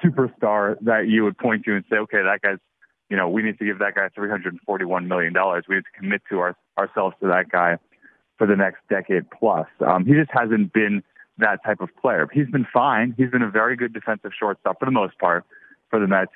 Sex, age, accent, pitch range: male, 30-49, American, 100-125 Hz